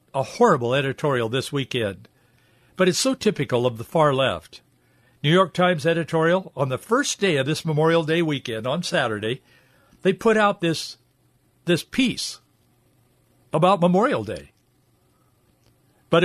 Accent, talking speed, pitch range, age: American, 140 wpm, 140-195 Hz, 60-79